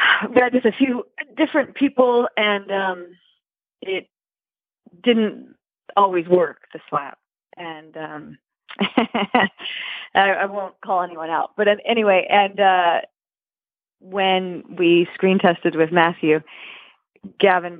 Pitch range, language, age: 155-205 Hz, English, 30-49